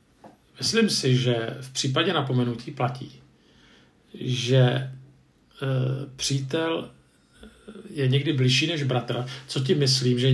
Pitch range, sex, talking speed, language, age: 125-145 Hz, male, 105 wpm, Czech, 50-69